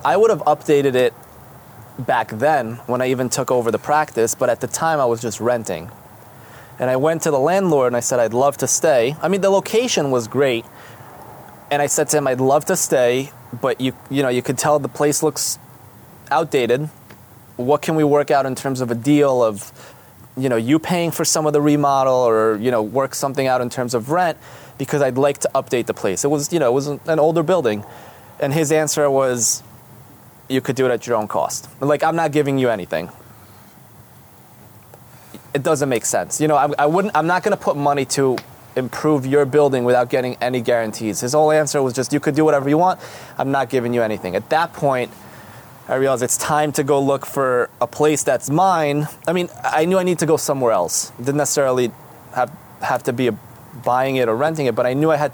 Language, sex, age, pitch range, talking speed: English, male, 20-39, 125-150 Hz, 220 wpm